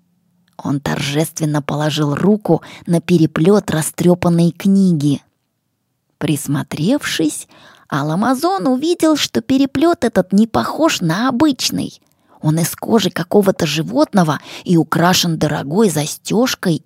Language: Russian